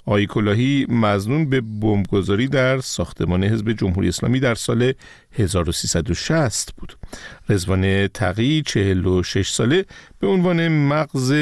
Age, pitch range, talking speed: 50-69, 100-155 Hz, 105 wpm